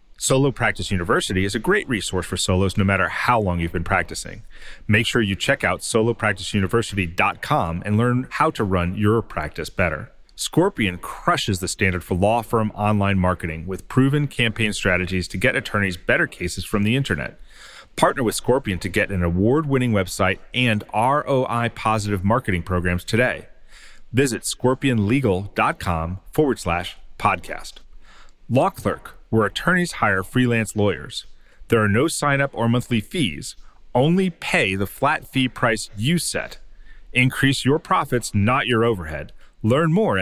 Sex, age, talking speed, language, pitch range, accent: male, 40-59, 145 wpm, English, 95-130 Hz, American